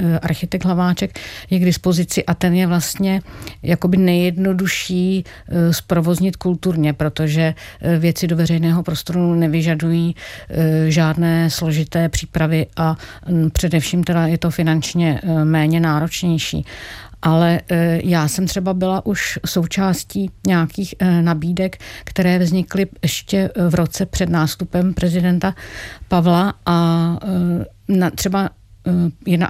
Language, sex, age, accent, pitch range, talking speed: Czech, female, 50-69, native, 165-185 Hz, 105 wpm